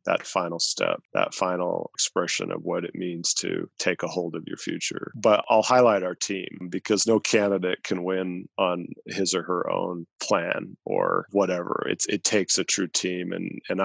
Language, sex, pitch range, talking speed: English, male, 90-110 Hz, 185 wpm